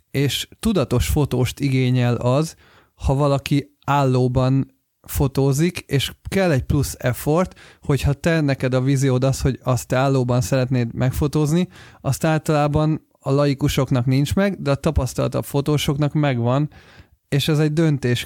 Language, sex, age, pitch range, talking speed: Hungarian, male, 30-49, 125-140 Hz, 135 wpm